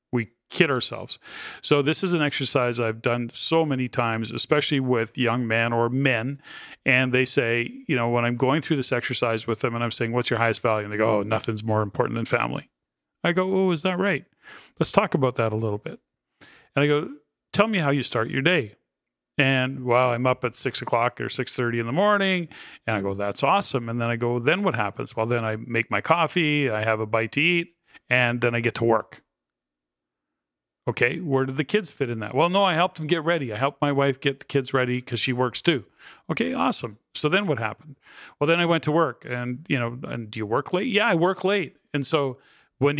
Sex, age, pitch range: male, 40-59, 120-160 Hz